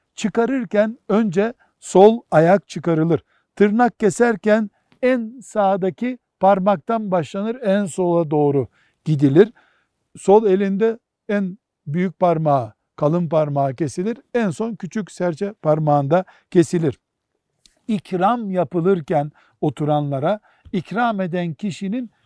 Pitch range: 145-200 Hz